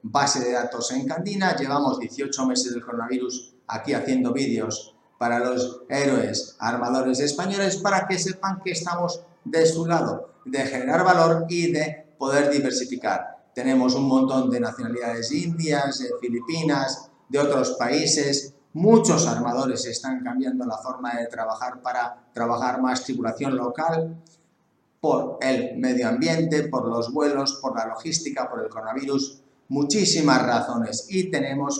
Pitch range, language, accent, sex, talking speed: 130-165 Hz, English, Spanish, male, 140 wpm